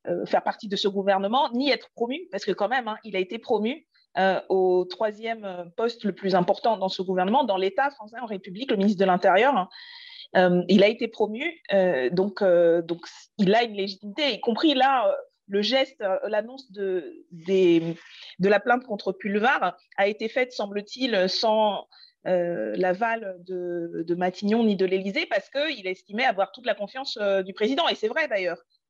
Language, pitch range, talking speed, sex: French, 190-255 Hz, 180 wpm, female